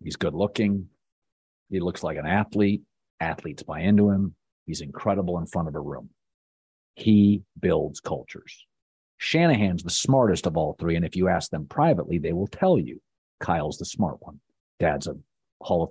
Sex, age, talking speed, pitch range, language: male, 50-69, 170 wpm, 90-120 Hz, English